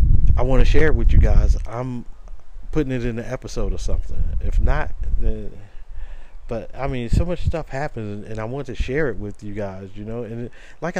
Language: English